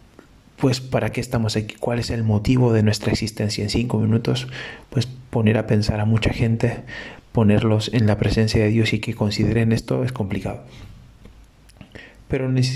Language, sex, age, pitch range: Spanish, male, 30-49, 110-135 Hz